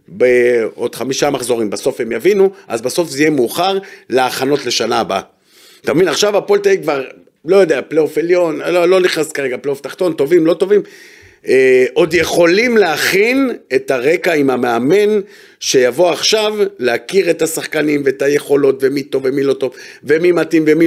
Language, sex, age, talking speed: Hebrew, male, 50-69, 155 wpm